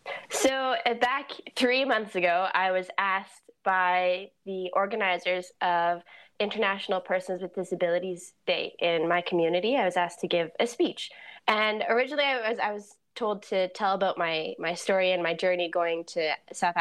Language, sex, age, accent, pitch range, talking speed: English, female, 20-39, American, 175-210 Hz, 165 wpm